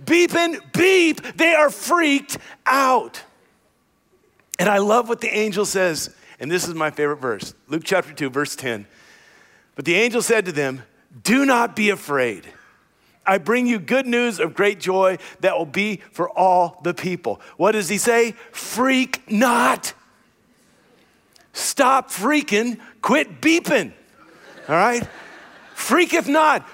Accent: American